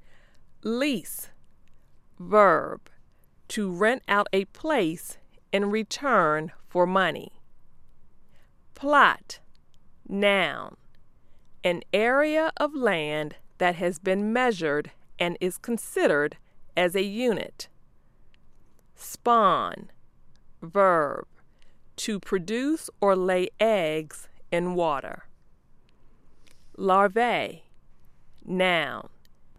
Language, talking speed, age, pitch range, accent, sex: English, 75 wpm, 40-59, 175-240 Hz, American, female